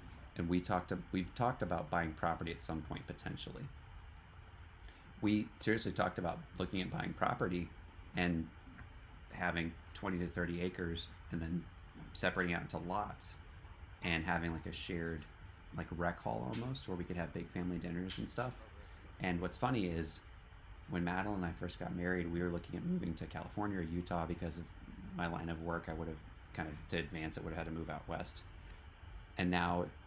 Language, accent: English, American